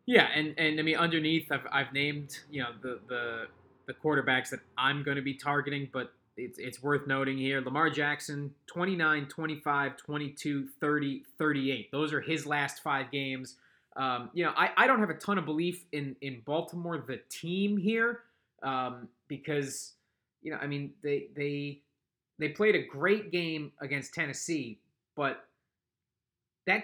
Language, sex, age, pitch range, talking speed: English, male, 20-39, 135-165 Hz, 165 wpm